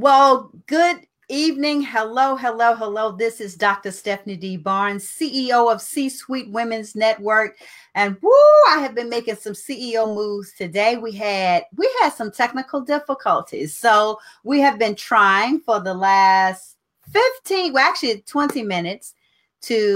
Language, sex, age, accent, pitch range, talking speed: English, female, 40-59, American, 190-250 Hz, 145 wpm